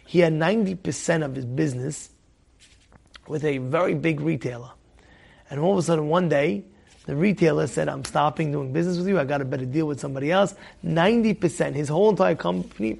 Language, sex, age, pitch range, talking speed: English, male, 30-49, 140-200 Hz, 185 wpm